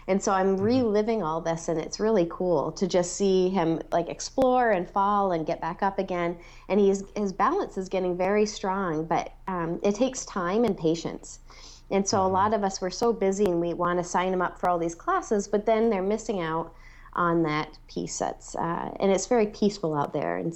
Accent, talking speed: American, 220 wpm